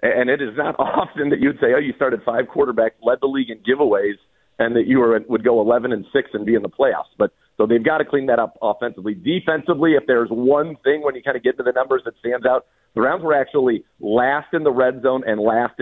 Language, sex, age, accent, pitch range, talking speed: English, male, 50-69, American, 115-155 Hz, 260 wpm